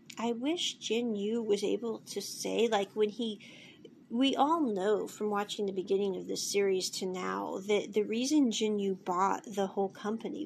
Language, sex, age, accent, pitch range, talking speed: English, female, 40-59, American, 205-250 Hz, 185 wpm